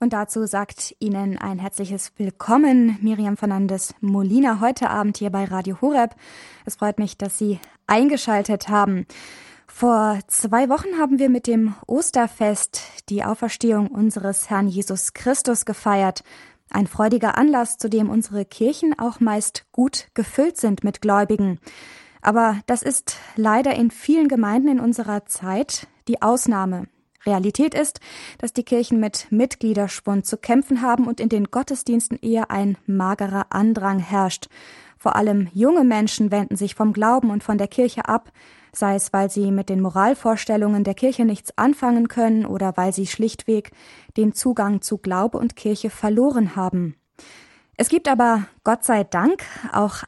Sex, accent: female, German